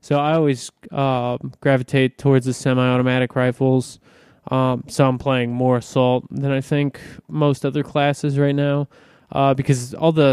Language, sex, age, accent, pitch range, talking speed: English, male, 20-39, American, 130-145 Hz, 155 wpm